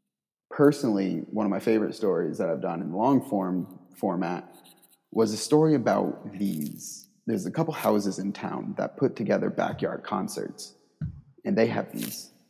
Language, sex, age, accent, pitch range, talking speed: English, male, 30-49, American, 100-145 Hz, 160 wpm